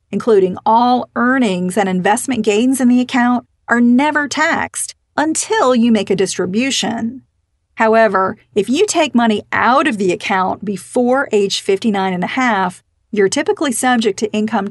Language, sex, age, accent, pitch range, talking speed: English, female, 40-59, American, 195-245 Hz, 150 wpm